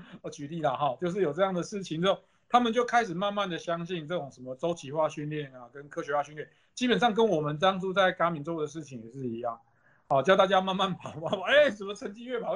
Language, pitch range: Chinese, 150-200 Hz